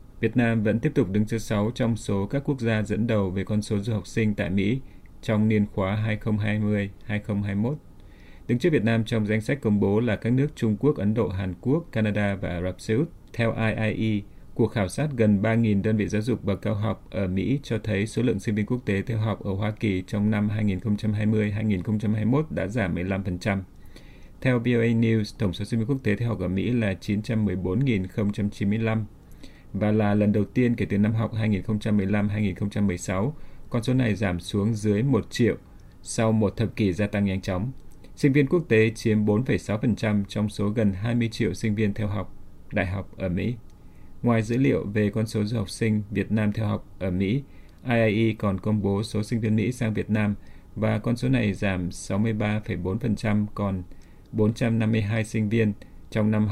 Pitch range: 100-115 Hz